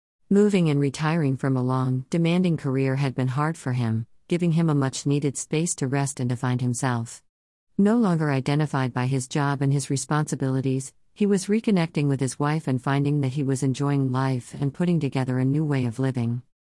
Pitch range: 130-160 Hz